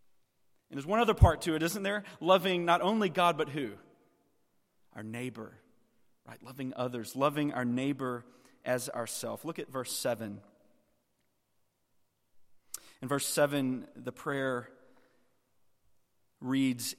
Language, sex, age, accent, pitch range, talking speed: English, male, 30-49, American, 135-185 Hz, 125 wpm